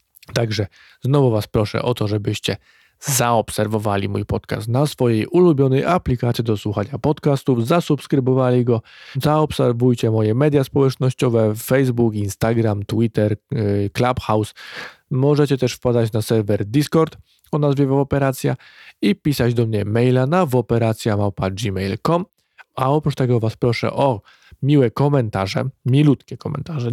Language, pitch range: Polish, 110-145 Hz